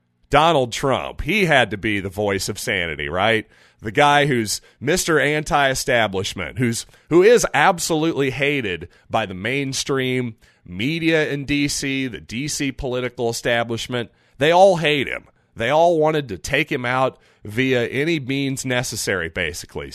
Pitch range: 110-140 Hz